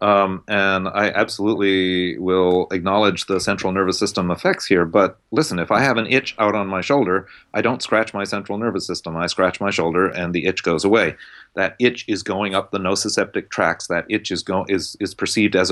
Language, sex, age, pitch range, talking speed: English, male, 40-59, 90-100 Hz, 200 wpm